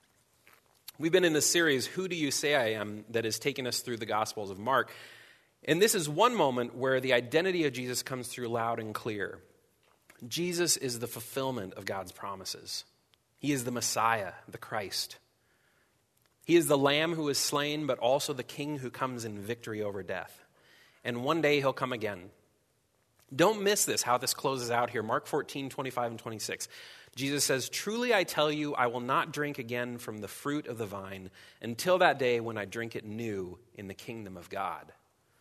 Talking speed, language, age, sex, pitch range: 195 wpm, English, 30-49, male, 110-145 Hz